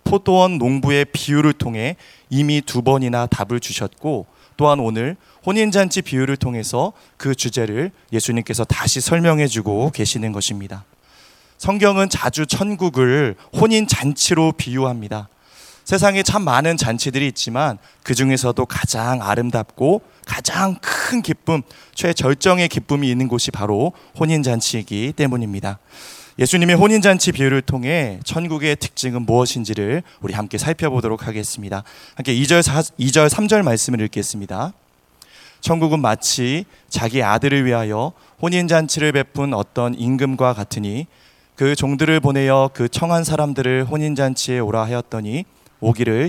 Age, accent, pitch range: 30-49, native, 115-160 Hz